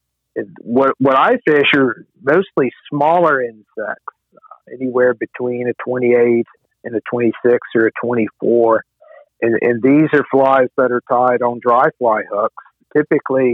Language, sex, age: English, male, 50-69